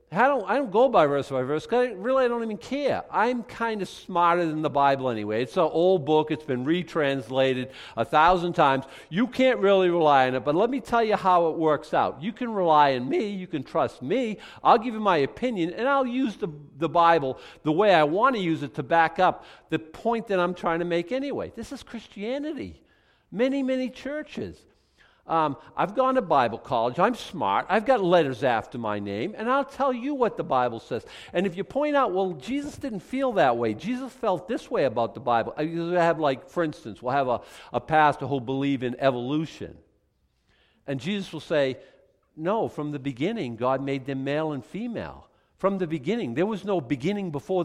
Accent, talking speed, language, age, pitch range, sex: American, 210 wpm, English, 50-69, 145-215 Hz, male